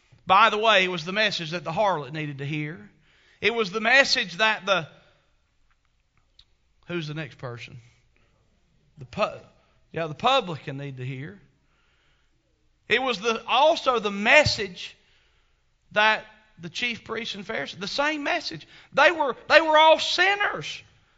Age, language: 40-59, English